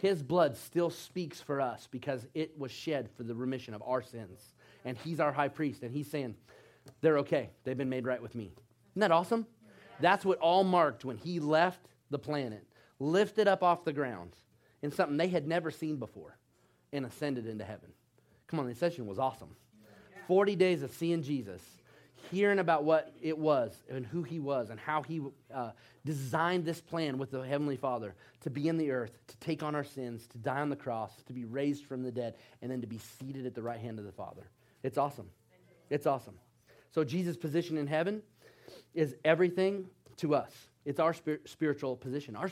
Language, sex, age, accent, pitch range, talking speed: English, male, 30-49, American, 120-165 Hz, 200 wpm